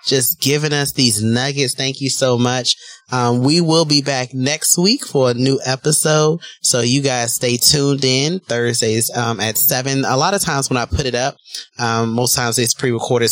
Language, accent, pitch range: English, American, 120-135 Hz